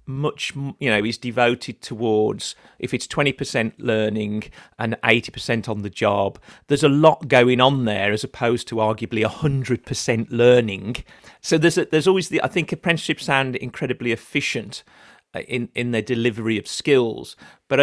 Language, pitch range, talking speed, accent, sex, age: English, 110-140 Hz, 170 wpm, British, male, 40-59